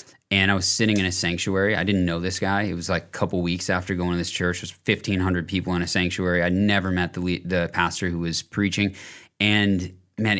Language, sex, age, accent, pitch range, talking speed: English, male, 30-49, American, 90-105 Hz, 235 wpm